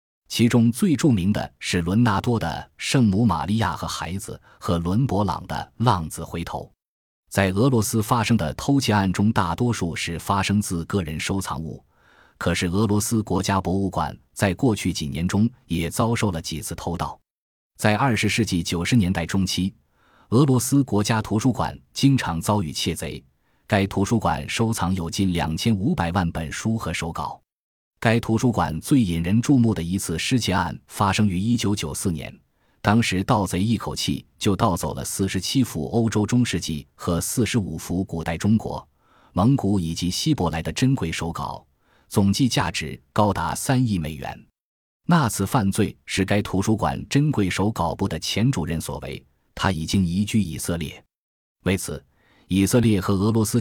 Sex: male